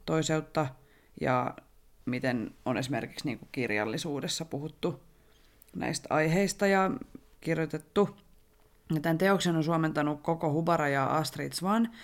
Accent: native